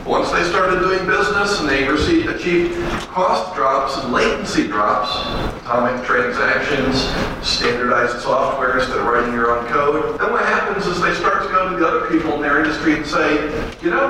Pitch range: 155-250 Hz